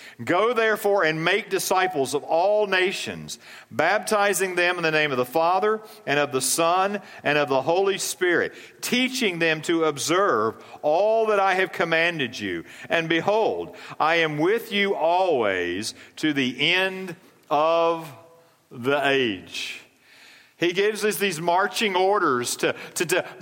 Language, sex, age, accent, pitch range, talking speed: English, male, 50-69, American, 160-210 Hz, 145 wpm